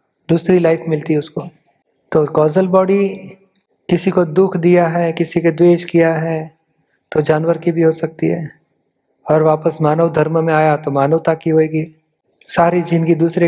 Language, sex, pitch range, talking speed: Hindi, male, 155-170 Hz, 165 wpm